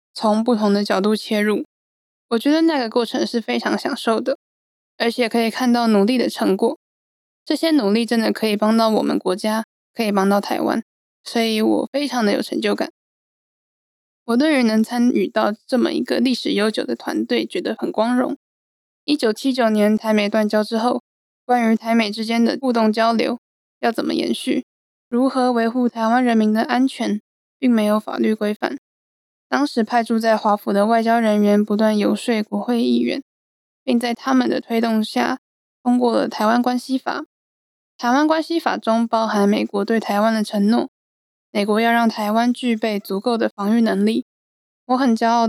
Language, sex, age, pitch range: Chinese, female, 10-29, 215-245 Hz